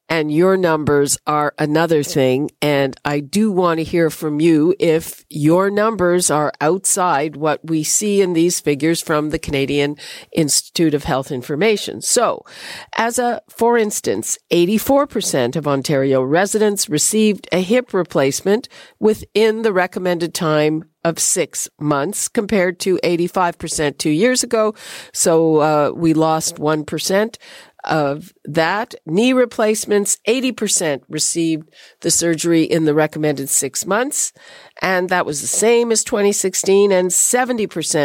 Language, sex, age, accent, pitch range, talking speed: English, female, 50-69, American, 150-200 Hz, 130 wpm